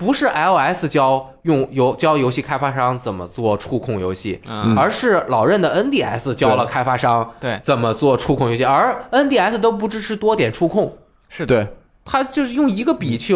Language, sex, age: Chinese, male, 20-39